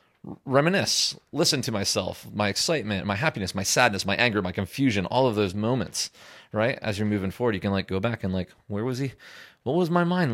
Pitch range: 100-150 Hz